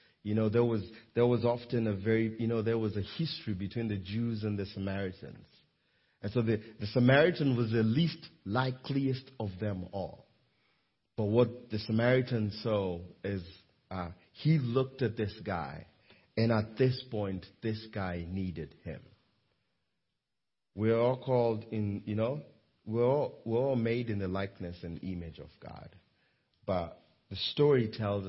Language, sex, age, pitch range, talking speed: English, male, 40-59, 95-115 Hz, 160 wpm